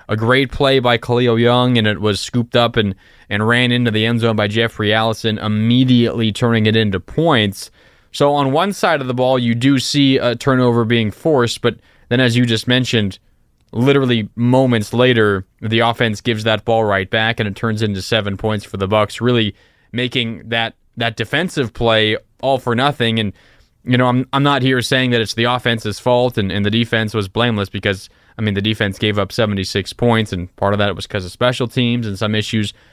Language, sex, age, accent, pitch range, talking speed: English, male, 20-39, American, 105-125 Hz, 210 wpm